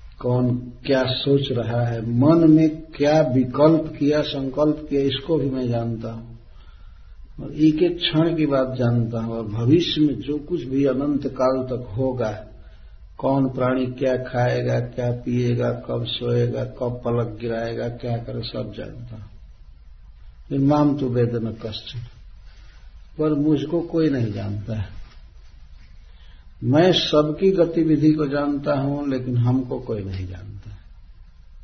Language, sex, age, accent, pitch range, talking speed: Hindi, male, 60-79, native, 95-145 Hz, 135 wpm